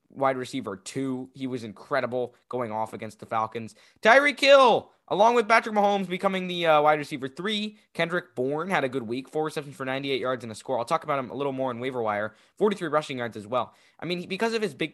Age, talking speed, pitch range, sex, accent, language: 20-39, 235 wpm, 110-150 Hz, male, American, English